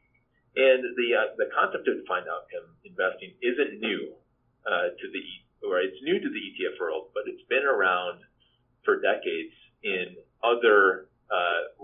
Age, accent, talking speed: 30-49, American, 150 wpm